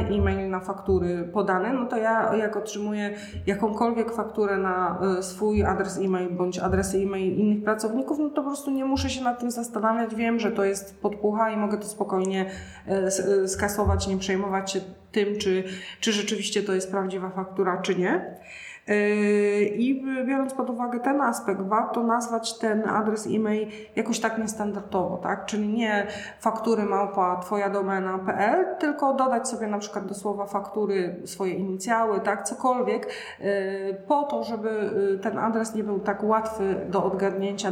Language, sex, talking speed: Polish, female, 155 wpm